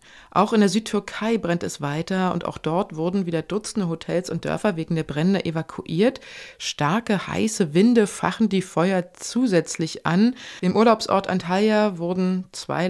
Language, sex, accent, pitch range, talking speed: German, female, German, 165-210 Hz, 155 wpm